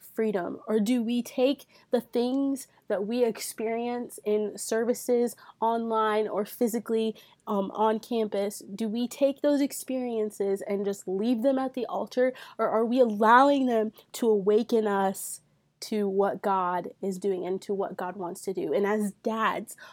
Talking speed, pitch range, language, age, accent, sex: 160 wpm, 195-230 Hz, English, 20-39, American, female